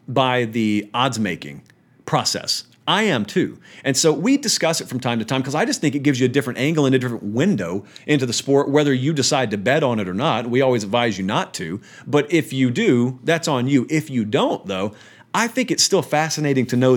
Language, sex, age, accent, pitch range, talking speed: English, male, 40-59, American, 120-150 Hz, 235 wpm